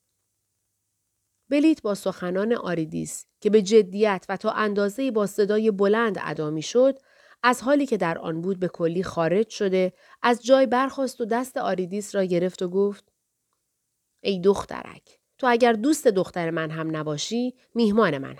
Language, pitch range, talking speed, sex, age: Persian, 180-240 Hz, 150 wpm, female, 30-49